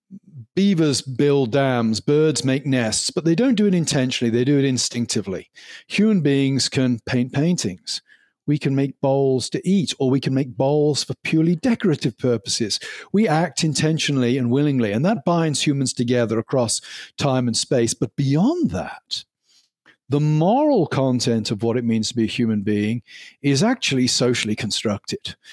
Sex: male